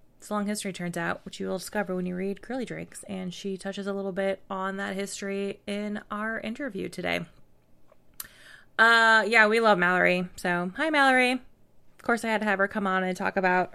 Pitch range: 190-225 Hz